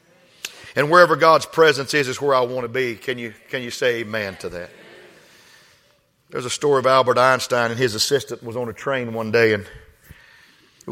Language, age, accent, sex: English, 50-69, American, male